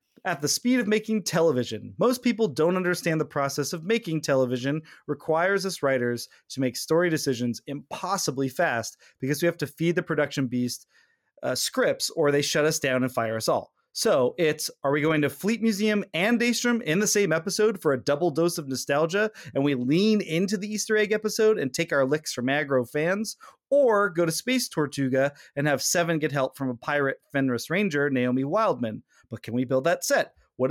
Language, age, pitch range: English, 30-49, 140-195 Hz